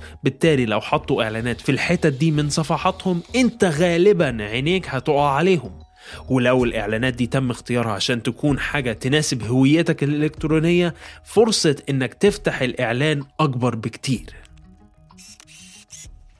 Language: Arabic